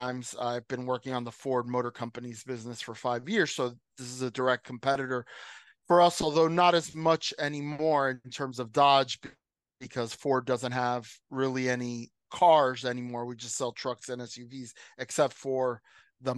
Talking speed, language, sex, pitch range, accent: 170 wpm, English, male, 125-155 Hz, American